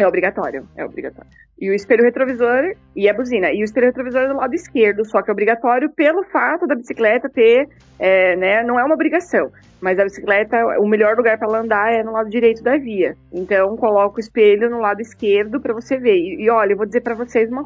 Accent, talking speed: Brazilian, 230 wpm